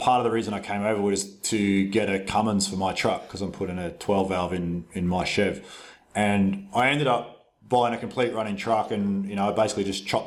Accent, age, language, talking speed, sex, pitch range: Australian, 30-49, English, 240 wpm, male, 95-115 Hz